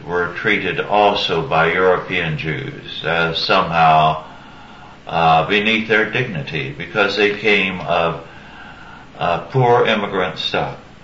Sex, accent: male, American